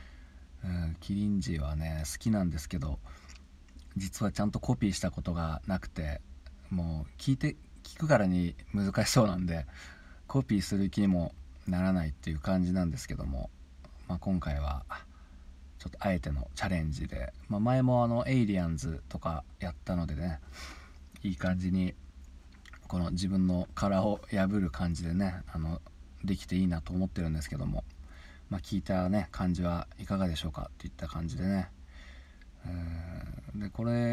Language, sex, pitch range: Japanese, male, 70-95 Hz